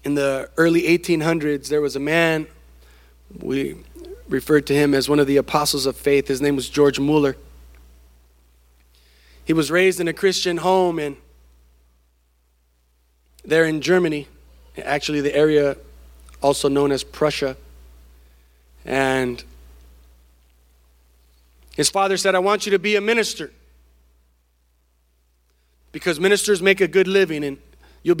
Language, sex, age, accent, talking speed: English, male, 30-49, American, 130 wpm